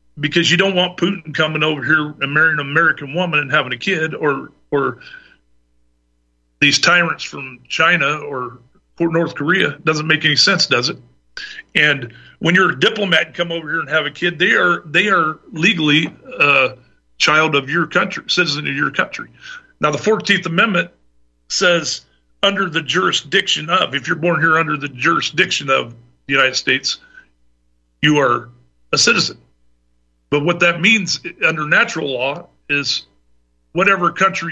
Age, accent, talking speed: 50-69, American, 160 wpm